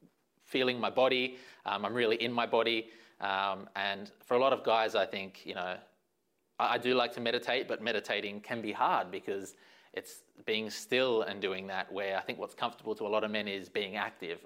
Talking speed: 210 wpm